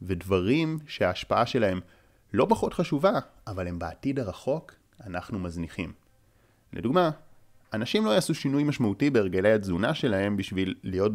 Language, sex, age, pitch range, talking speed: Hebrew, male, 30-49, 90-125 Hz, 125 wpm